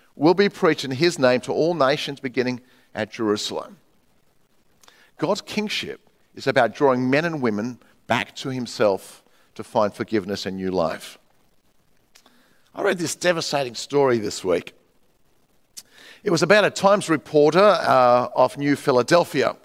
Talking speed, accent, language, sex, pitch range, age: 140 wpm, Australian, English, male, 135-200 Hz, 50-69